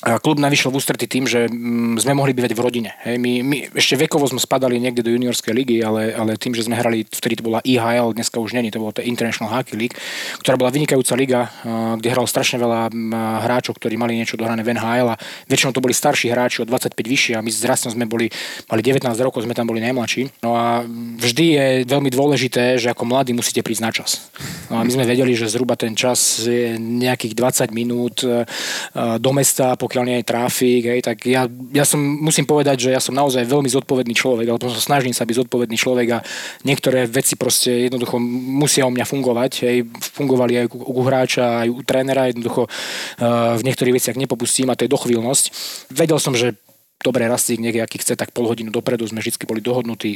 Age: 20-39